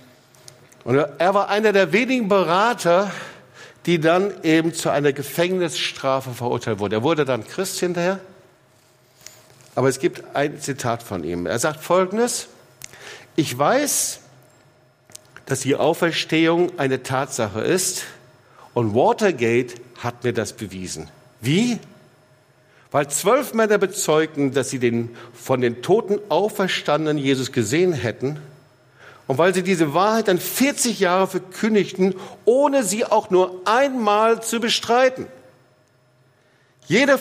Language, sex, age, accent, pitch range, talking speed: German, male, 50-69, German, 125-195 Hz, 125 wpm